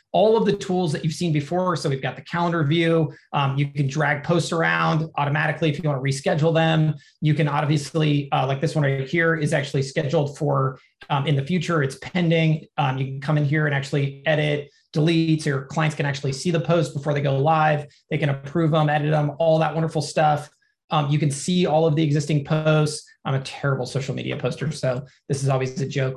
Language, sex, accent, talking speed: English, male, American, 225 wpm